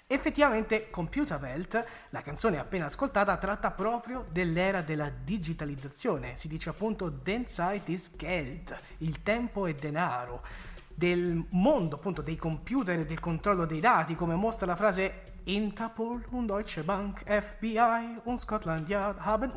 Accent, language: native, Italian